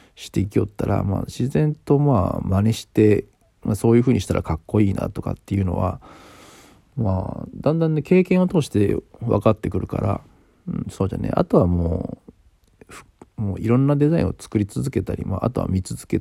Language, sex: Japanese, male